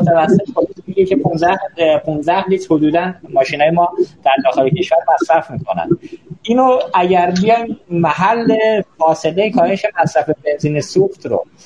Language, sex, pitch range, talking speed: Persian, male, 150-195 Hz, 125 wpm